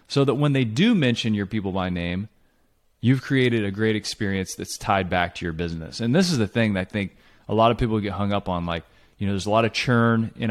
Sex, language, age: male, English, 30-49